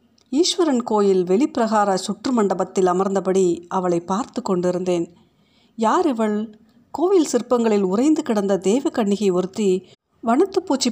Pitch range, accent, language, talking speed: 190-240 Hz, native, Tamil, 105 wpm